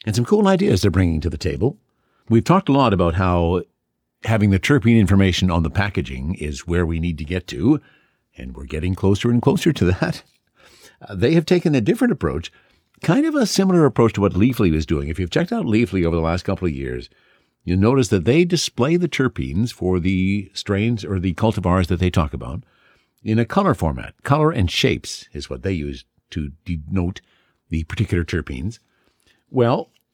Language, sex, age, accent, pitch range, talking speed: English, male, 60-79, American, 90-120 Hz, 195 wpm